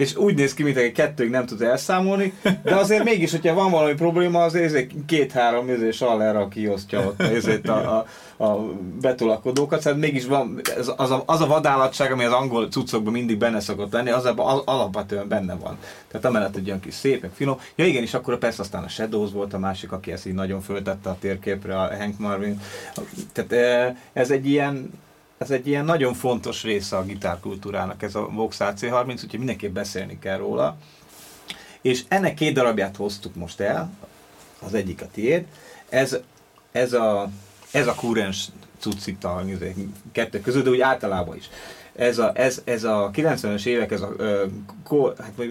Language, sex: Hungarian, male